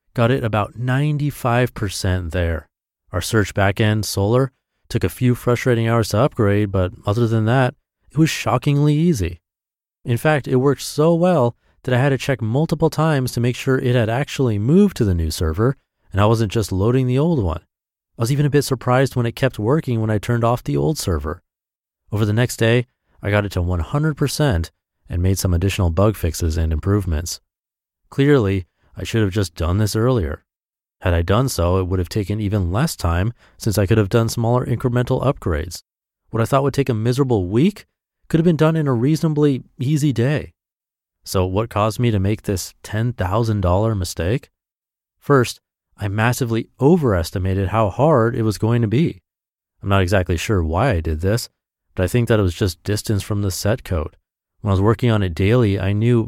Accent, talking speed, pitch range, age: American, 195 wpm, 95-130 Hz, 30-49